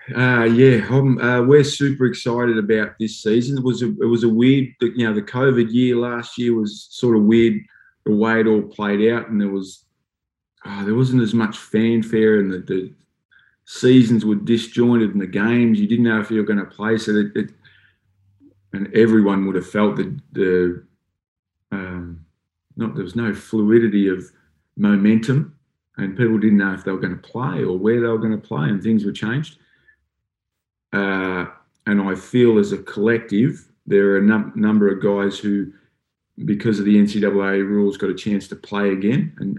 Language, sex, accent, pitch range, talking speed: English, male, Australian, 100-115 Hz, 190 wpm